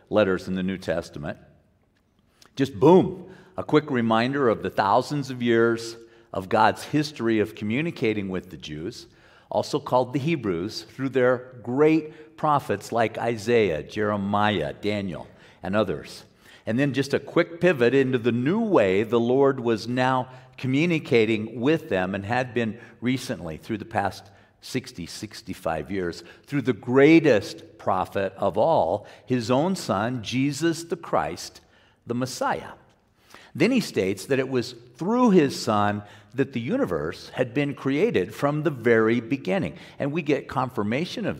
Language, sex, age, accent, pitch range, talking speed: English, male, 50-69, American, 105-140 Hz, 150 wpm